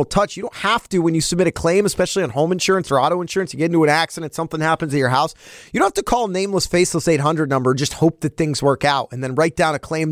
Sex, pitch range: male, 145-195 Hz